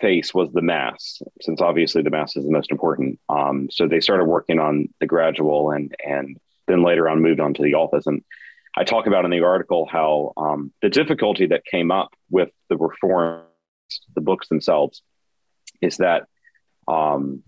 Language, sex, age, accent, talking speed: English, male, 30-49, American, 180 wpm